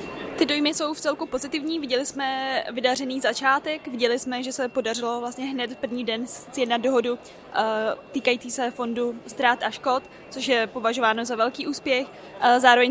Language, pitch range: Czech, 235-260 Hz